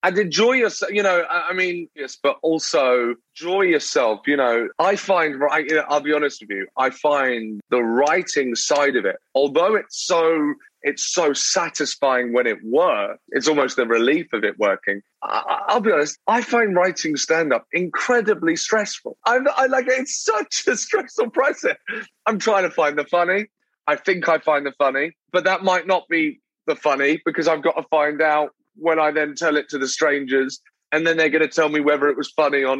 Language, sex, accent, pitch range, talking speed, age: English, male, British, 145-195 Hz, 200 wpm, 30-49